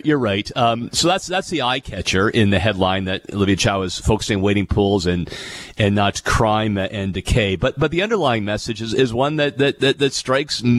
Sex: male